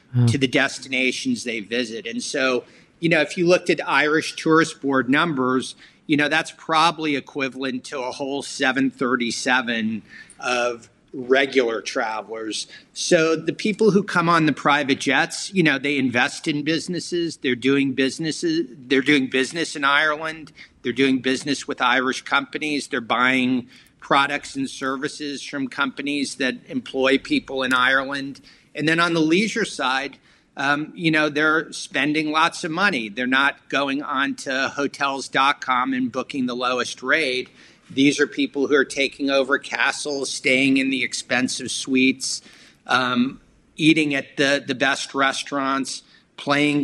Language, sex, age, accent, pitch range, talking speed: English, male, 50-69, American, 130-160 Hz, 150 wpm